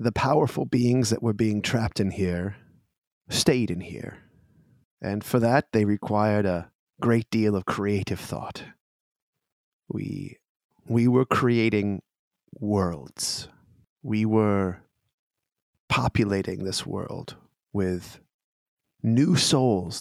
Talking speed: 110 wpm